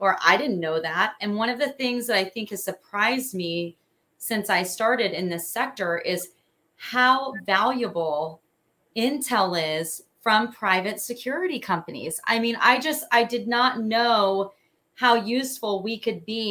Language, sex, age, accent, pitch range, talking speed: English, female, 30-49, American, 170-220 Hz, 160 wpm